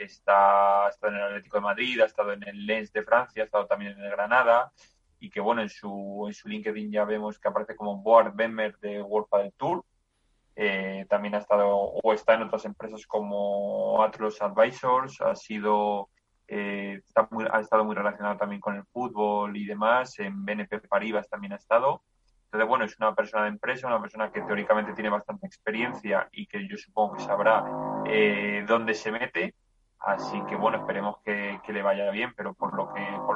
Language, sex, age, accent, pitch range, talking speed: Spanish, male, 20-39, Spanish, 100-110 Hz, 200 wpm